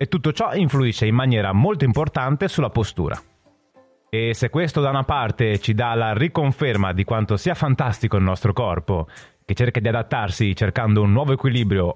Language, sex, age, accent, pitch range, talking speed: Italian, male, 30-49, native, 100-150 Hz, 175 wpm